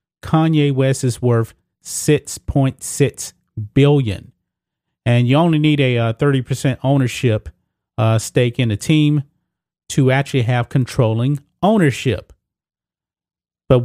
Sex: male